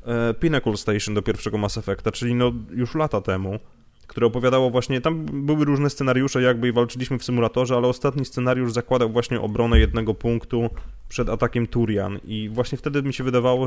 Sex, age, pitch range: male, 20-39, 115-135 Hz